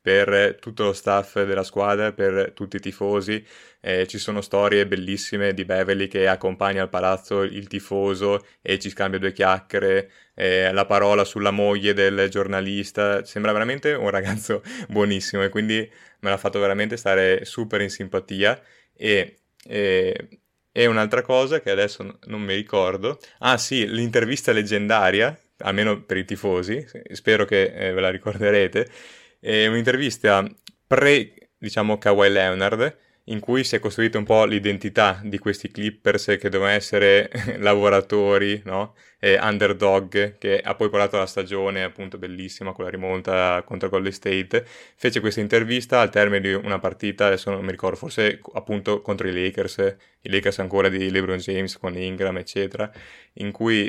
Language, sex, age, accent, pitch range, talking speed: Italian, male, 20-39, native, 95-105 Hz, 155 wpm